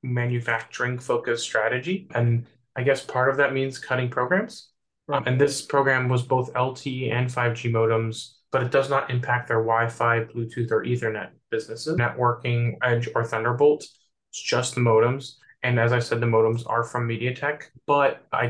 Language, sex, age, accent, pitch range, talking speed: English, male, 20-39, American, 120-130 Hz, 165 wpm